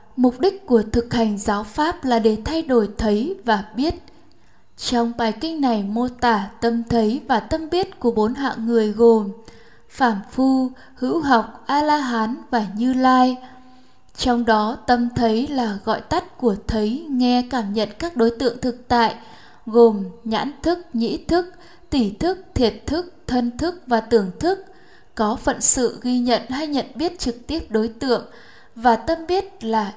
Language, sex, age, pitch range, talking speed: Vietnamese, female, 10-29, 225-275 Hz, 170 wpm